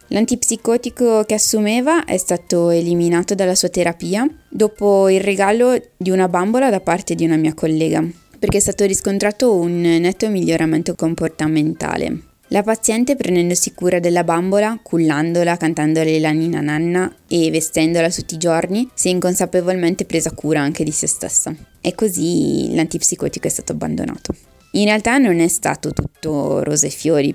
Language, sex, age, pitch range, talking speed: Italian, female, 20-39, 155-185 Hz, 150 wpm